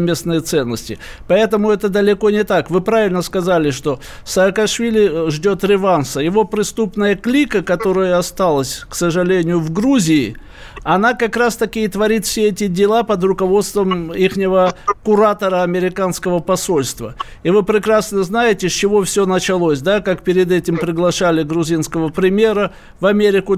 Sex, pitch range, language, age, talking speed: male, 170-200 Hz, Russian, 50-69, 135 wpm